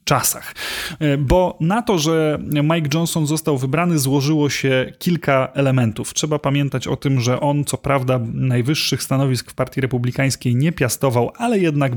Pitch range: 130-150 Hz